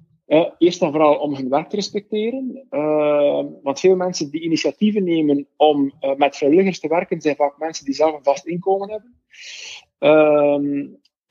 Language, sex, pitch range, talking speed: Dutch, male, 145-200 Hz, 170 wpm